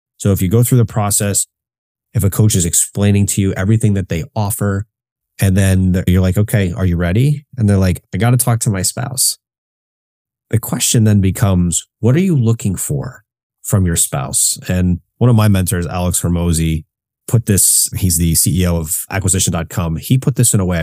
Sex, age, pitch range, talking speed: male, 30-49, 90-115 Hz, 195 wpm